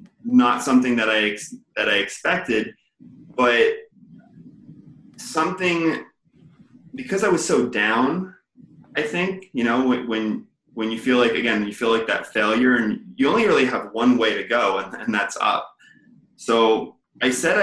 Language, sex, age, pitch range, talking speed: English, male, 20-39, 105-130 Hz, 155 wpm